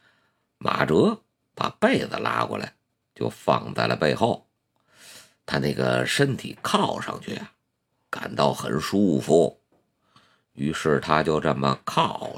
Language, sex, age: Chinese, male, 50-69